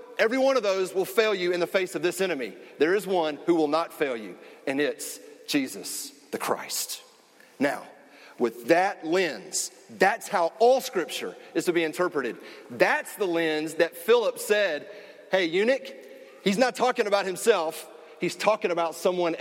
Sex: male